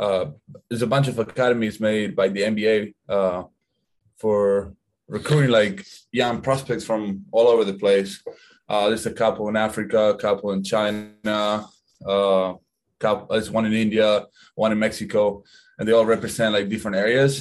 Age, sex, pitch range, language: 20-39, male, 100-115 Hz, English